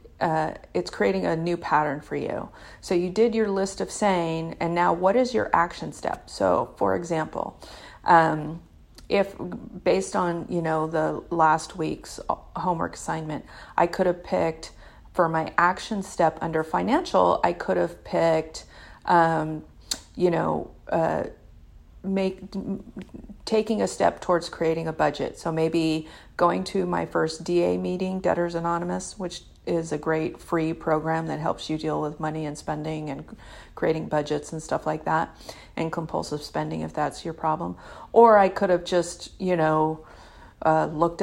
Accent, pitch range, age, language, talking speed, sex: American, 155-180 Hz, 40-59, English, 155 wpm, female